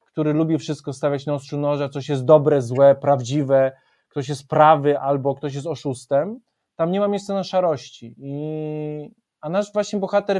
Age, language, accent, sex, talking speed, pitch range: 20-39, Polish, native, male, 175 wpm, 165-195 Hz